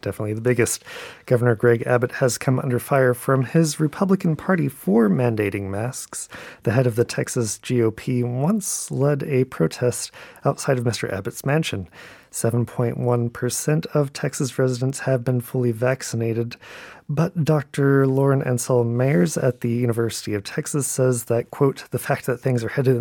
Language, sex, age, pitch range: Korean, male, 30-49, 115-140 Hz